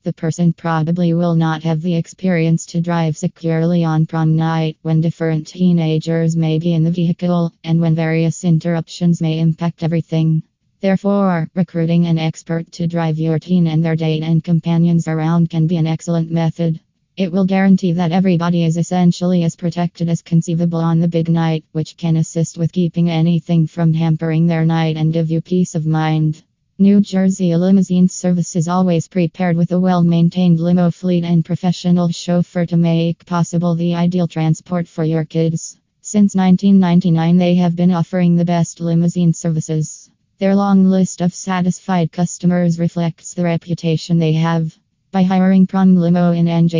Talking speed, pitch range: 170 wpm, 160-175 Hz